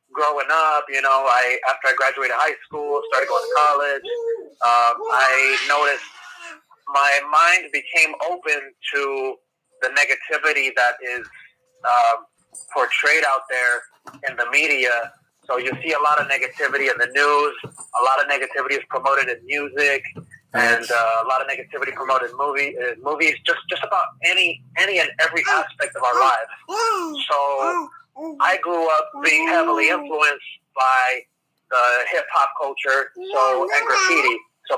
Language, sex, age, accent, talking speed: English, male, 30-49, American, 150 wpm